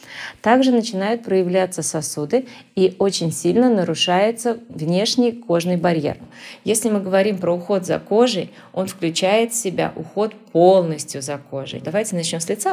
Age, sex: 30-49, female